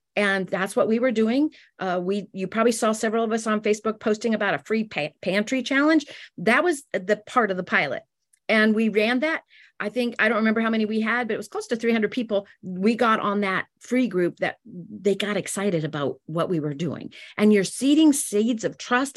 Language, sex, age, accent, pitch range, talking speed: English, female, 40-59, American, 190-250 Hz, 220 wpm